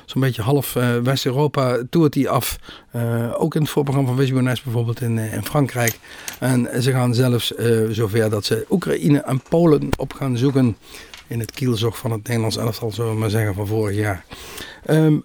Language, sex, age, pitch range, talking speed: Dutch, male, 50-69, 115-145 Hz, 190 wpm